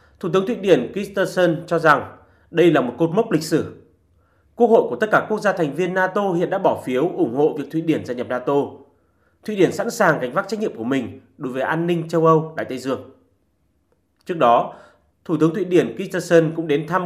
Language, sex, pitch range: Vietnamese, male, 150-190 Hz